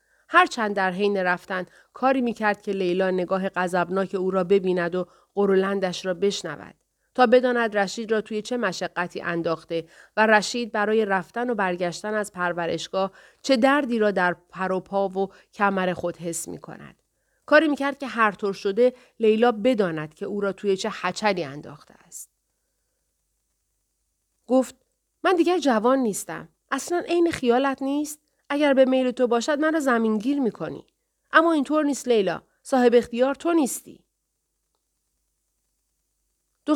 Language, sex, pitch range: Persian, female, 185-250 Hz